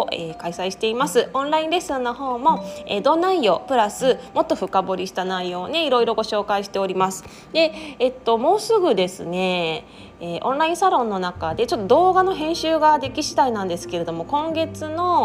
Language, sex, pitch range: Japanese, female, 185-270 Hz